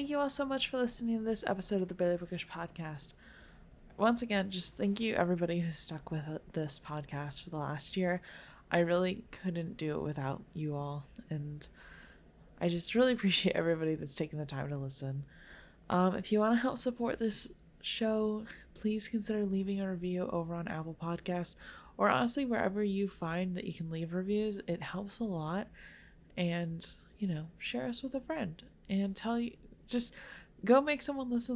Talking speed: 185 wpm